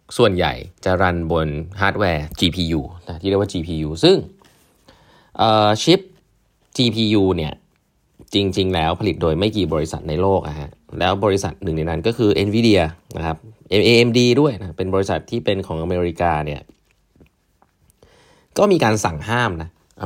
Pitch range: 80-110 Hz